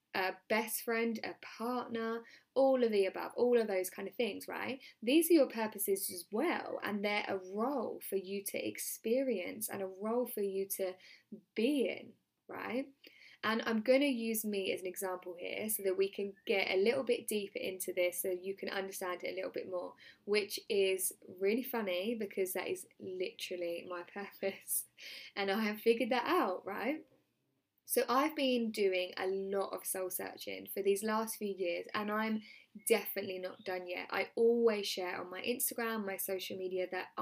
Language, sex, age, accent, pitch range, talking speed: English, female, 10-29, British, 190-235 Hz, 185 wpm